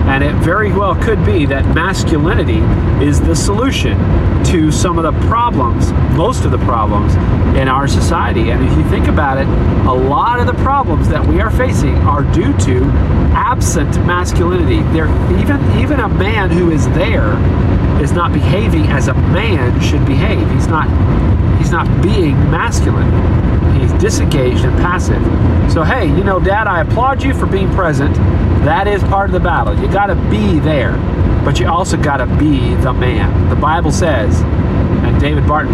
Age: 40-59